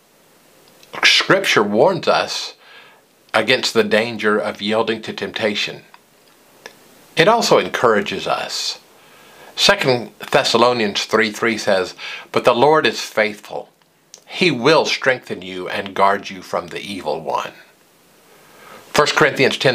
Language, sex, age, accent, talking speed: English, male, 50-69, American, 110 wpm